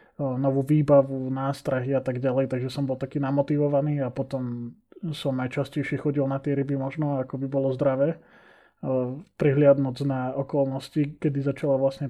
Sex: male